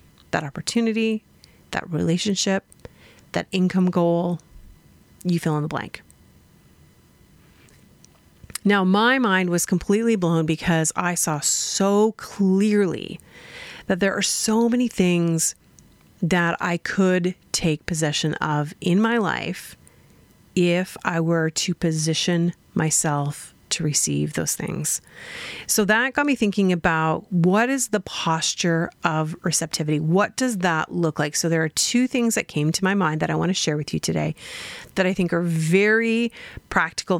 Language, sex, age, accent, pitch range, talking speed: English, female, 30-49, American, 165-205 Hz, 140 wpm